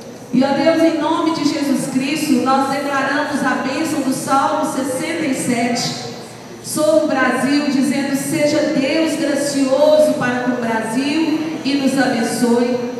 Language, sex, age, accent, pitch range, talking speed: Portuguese, female, 50-69, Brazilian, 250-310 Hz, 130 wpm